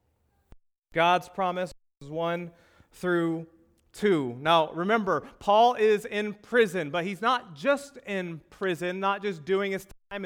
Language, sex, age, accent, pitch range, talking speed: English, male, 30-49, American, 140-225 Hz, 135 wpm